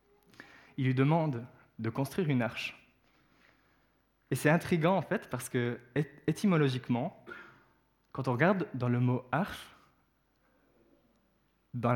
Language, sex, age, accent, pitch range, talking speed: French, male, 20-39, French, 120-150 Hz, 115 wpm